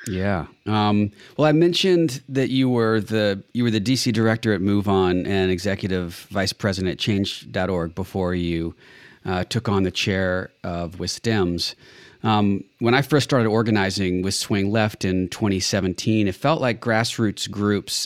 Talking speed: 155 wpm